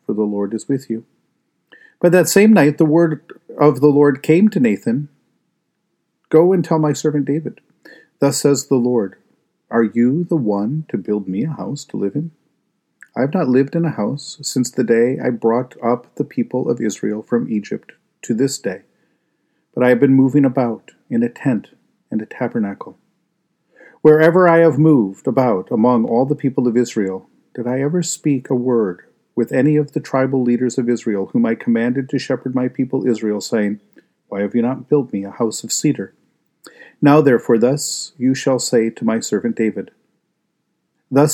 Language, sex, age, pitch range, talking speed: English, male, 50-69, 115-150 Hz, 185 wpm